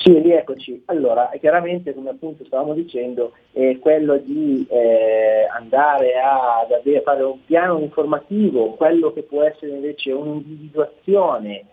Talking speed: 130 wpm